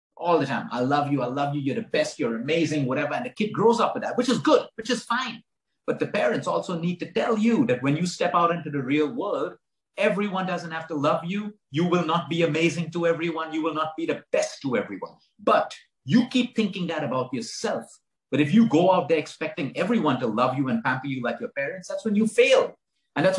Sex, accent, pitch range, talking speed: male, Indian, 140-210 Hz, 245 wpm